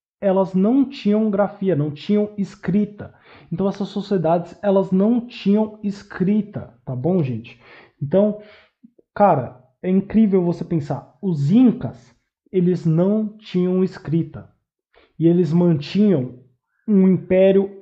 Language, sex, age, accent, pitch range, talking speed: Portuguese, male, 20-39, Brazilian, 150-205 Hz, 115 wpm